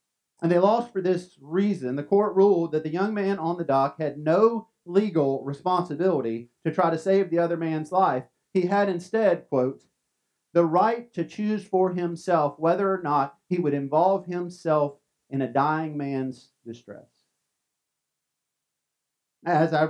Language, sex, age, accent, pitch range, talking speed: English, male, 40-59, American, 155-195 Hz, 155 wpm